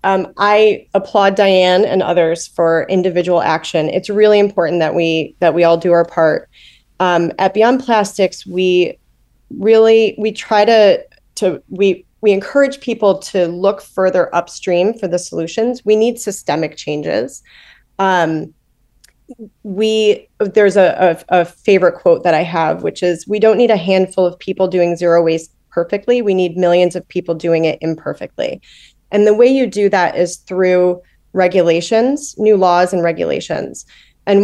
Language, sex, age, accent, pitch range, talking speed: English, female, 30-49, American, 175-210 Hz, 160 wpm